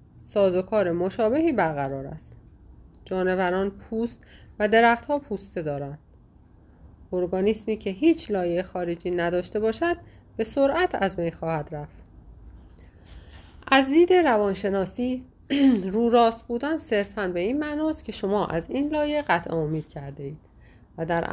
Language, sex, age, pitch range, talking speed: Persian, female, 30-49, 155-235 Hz, 130 wpm